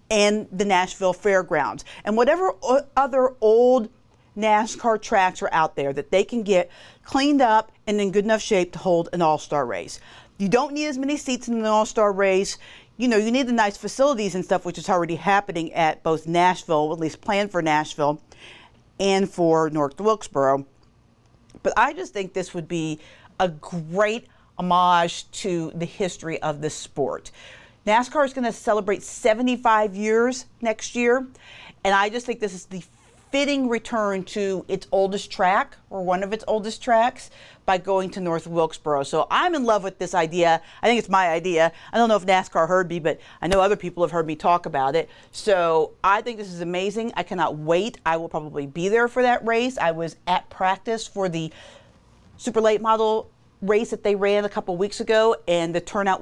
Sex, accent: female, American